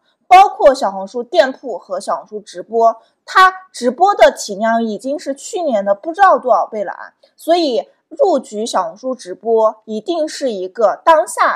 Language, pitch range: Chinese, 210-310 Hz